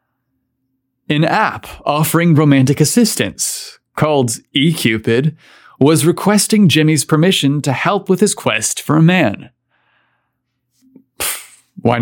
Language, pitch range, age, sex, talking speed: English, 120-160 Hz, 30-49, male, 100 wpm